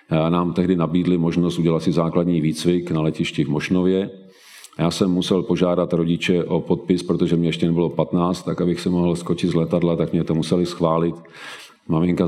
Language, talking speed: Czech, 180 wpm